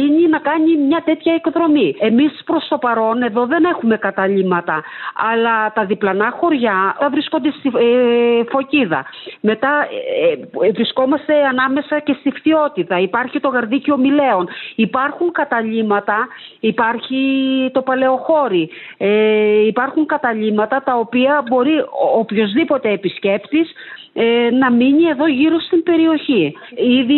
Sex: female